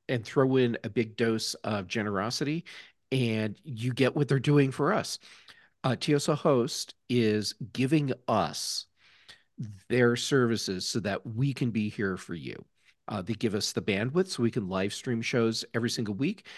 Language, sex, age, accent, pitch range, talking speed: English, male, 50-69, American, 105-130 Hz, 170 wpm